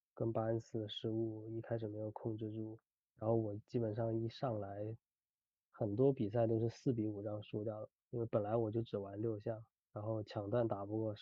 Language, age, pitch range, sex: Chinese, 20-39, 110-120 Hz, male